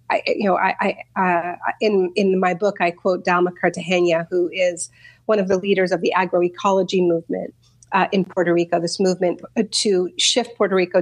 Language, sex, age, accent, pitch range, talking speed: English, female, 40-59, American, 180-210 Hz, 185 wpm